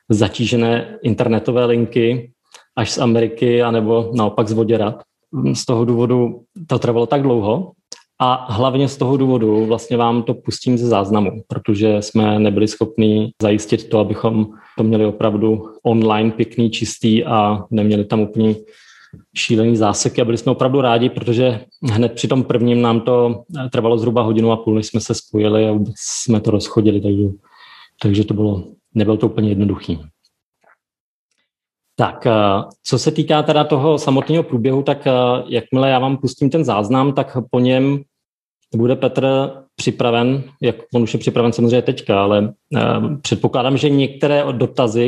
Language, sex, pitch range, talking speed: Czech, male, 110-125 Hz, 150 wpm